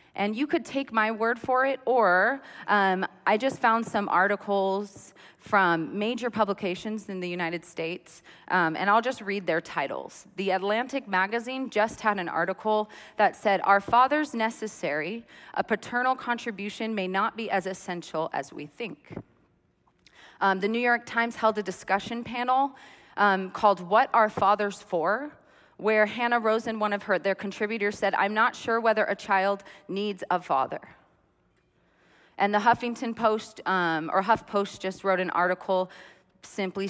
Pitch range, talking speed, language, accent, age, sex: 185-225 Hz, 160 wpm, English, American, 30-49, female